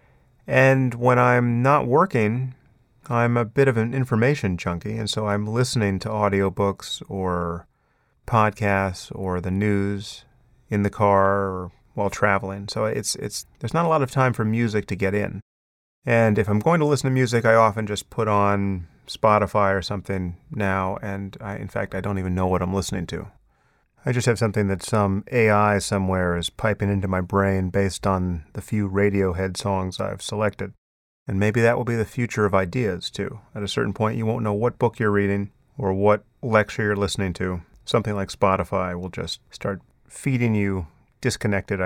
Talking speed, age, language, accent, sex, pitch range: 185 wpm, 30-49, English, American, male, 95-120 Hz